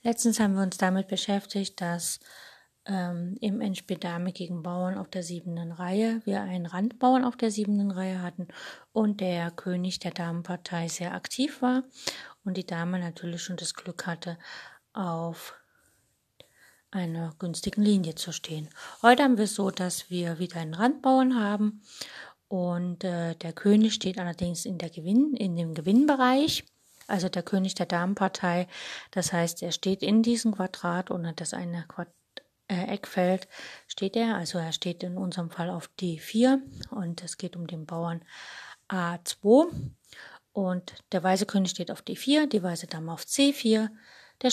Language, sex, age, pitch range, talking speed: German, female, 30-49, 175-215 Hz, 160 wpm